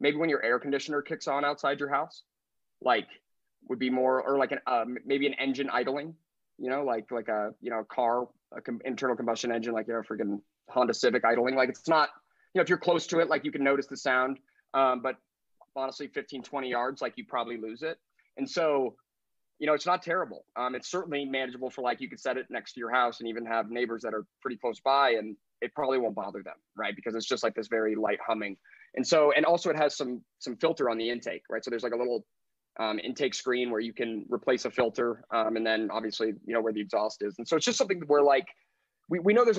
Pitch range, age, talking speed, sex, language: 115-145 Hz, 20-39, 250 wpm, male, English